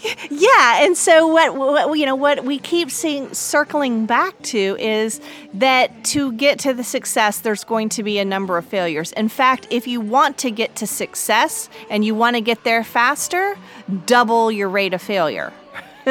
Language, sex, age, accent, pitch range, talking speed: English, female, 30-49, American, 210-270 Hz, 185 wpm